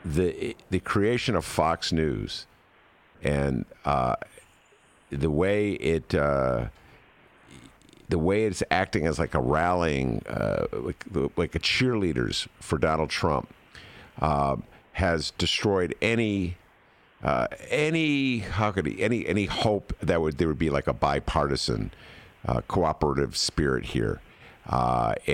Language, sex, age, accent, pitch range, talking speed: English, male, 50-69, American, 70-95 Hz, 130 wpm